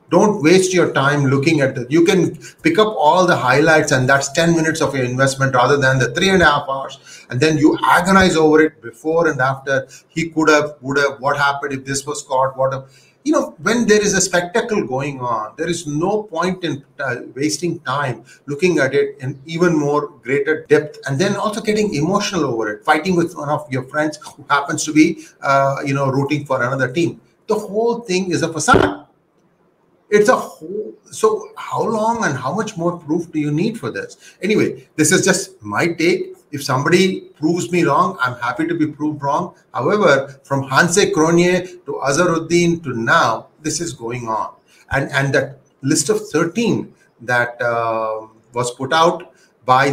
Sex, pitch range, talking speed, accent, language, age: male, 135-180 Hz, 195 wpm, Indian, English, 30-49